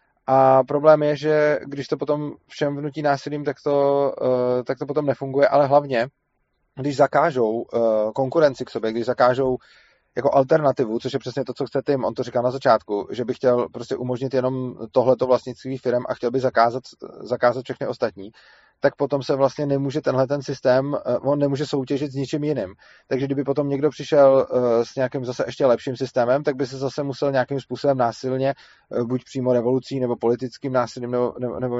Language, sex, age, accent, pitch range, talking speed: Czech, male, 30-49, native, 125-140 Hz, 175 wpm